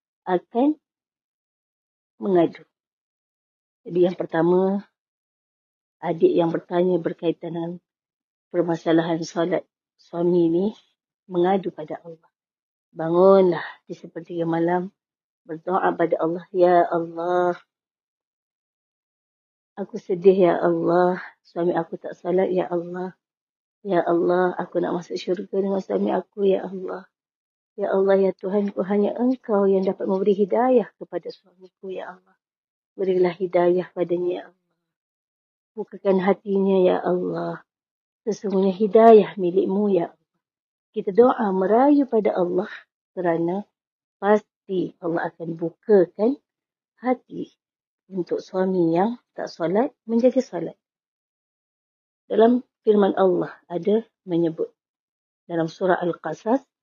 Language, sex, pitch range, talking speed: Malay, female, 170-200 Hz, 105 wpm